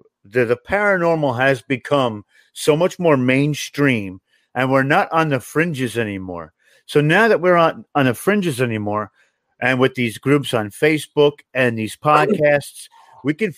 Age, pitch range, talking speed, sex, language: 40-59, 125-160 Hz, 160 wpm, male, English